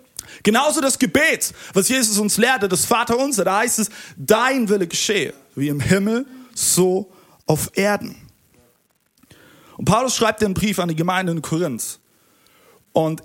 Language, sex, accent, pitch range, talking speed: German, male, German, 185-250 Hz, 150 wpm